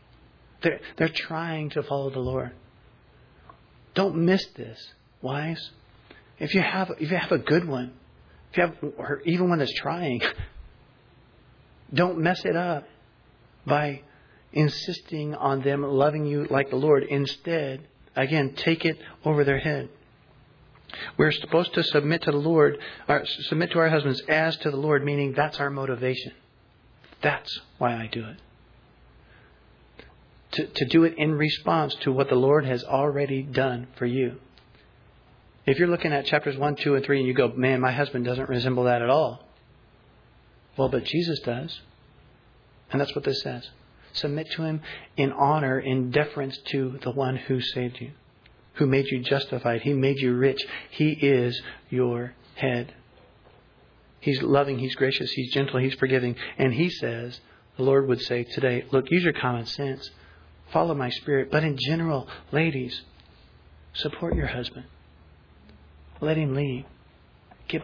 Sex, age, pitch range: male, 40-59, 125-150 Hz